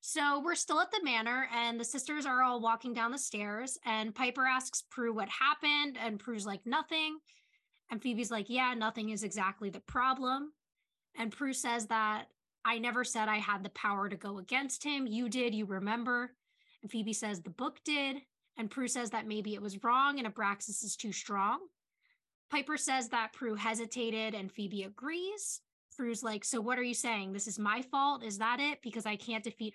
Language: English